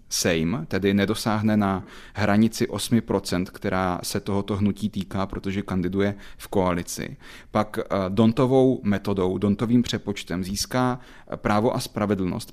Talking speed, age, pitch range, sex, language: 115 wpm, 30-49, 100-115 Hz, male, Czech